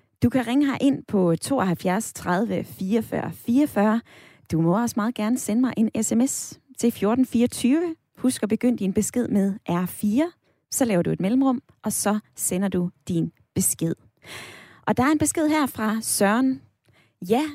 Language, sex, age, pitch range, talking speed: Danish, female, 20-39, 195-255 Hz, 160 wpm